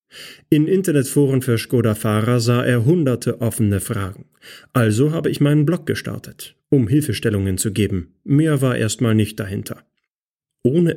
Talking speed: 140 wpm